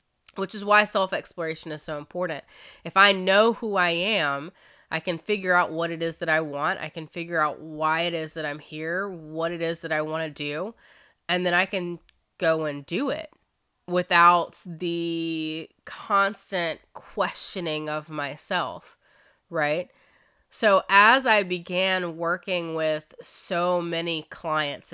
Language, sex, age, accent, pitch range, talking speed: English, female, 20-39, American, 155-180 Hz, 155 wpm